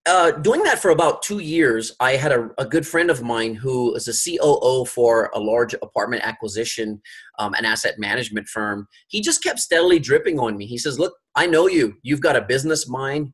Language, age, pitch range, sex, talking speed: English, 30-49, 115-175 Hz, male, 210 wpm